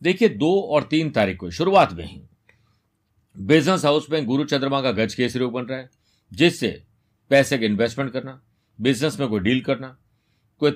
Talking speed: 175 wpm